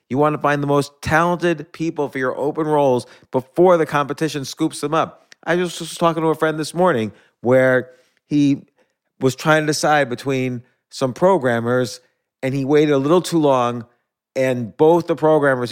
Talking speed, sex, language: 180 wpm, male, English